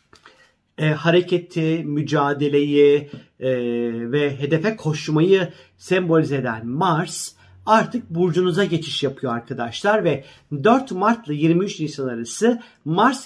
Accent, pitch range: native, 145-215 Hz